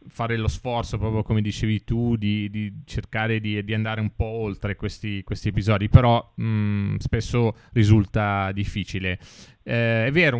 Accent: native